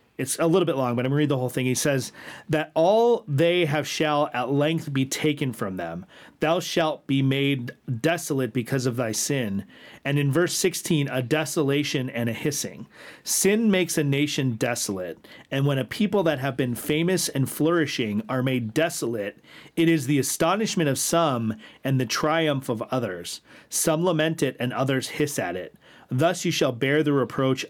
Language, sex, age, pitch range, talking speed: English, male, 40-59, 125-160 Hz, 190 wpm